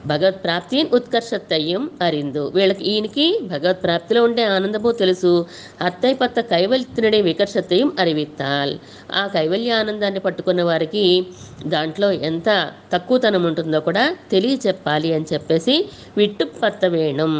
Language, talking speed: Telugu, 105 wpm